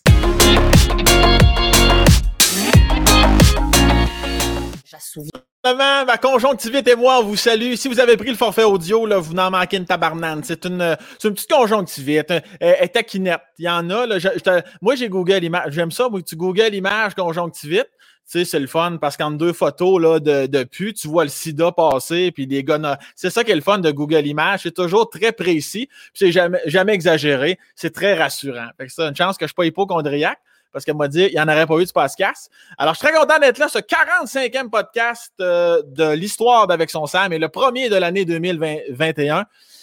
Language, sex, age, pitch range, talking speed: French, male, 20-39, 160-220 Hz, 200 wpm